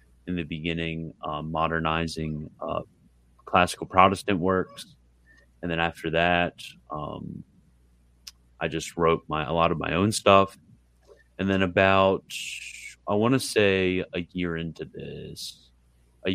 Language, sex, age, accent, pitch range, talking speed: English, male, 30-49, American, 70-90 Hz, 130 wpm